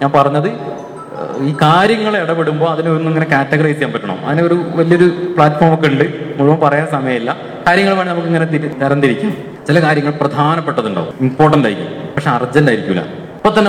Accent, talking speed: native, 140 wpm